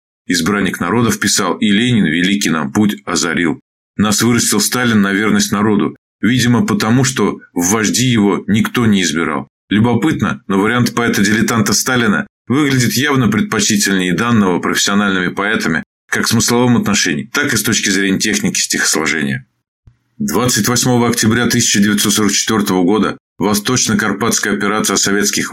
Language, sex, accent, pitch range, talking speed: Russian, male, native, 100-120 Hz, 125 wpm